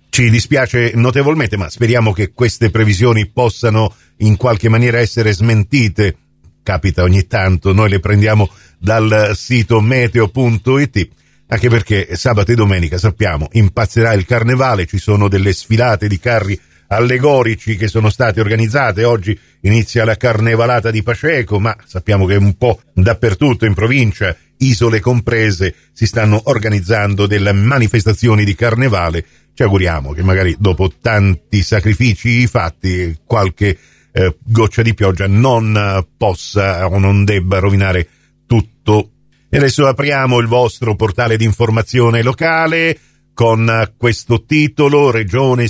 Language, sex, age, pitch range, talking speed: Italian, male, 50-69, 100-125 Hz, 130 wpm